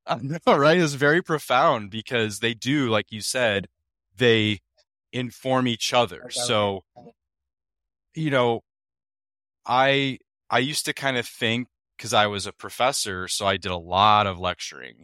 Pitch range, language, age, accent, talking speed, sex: 90-115 Hz, English, 20-39, American, 150 wpm, male